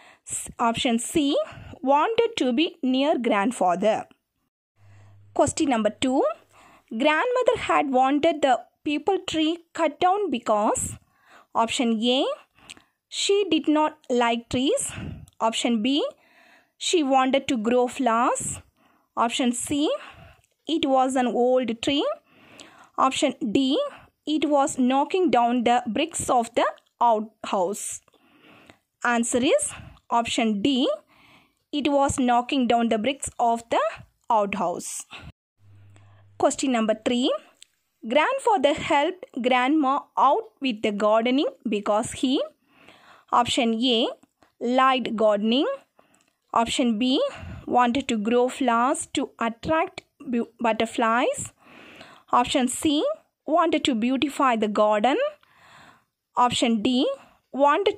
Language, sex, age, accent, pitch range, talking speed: English, female, 20-39, Indian, 235-305 Hz, 100 wpm